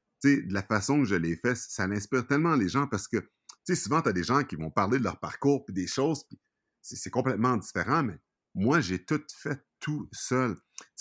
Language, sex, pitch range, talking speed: French, male, 85-115 Hz, 235 wpm